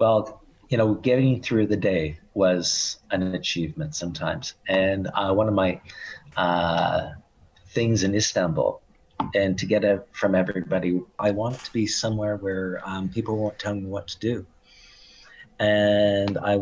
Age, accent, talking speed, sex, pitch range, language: 40-59, American, 150 wpm, male, 90-110 Hz, English